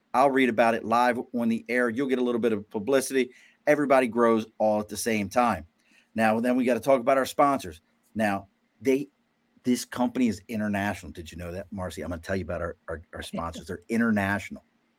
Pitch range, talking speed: 105-125 Hz, 215 wpm